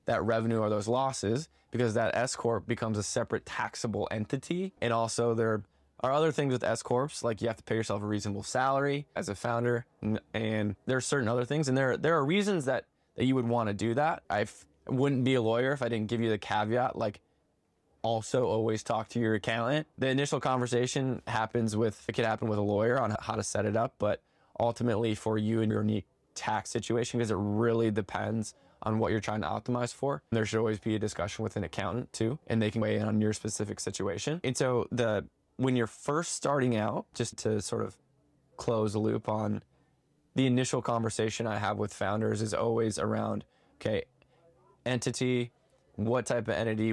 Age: 20-39